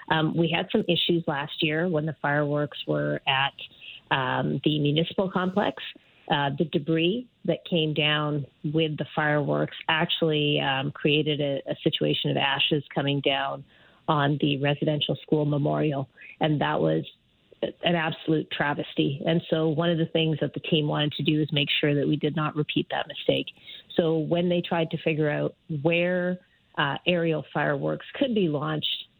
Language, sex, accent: English, female, American